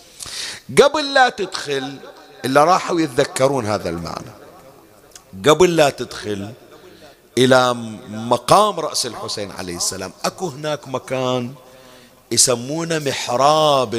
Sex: male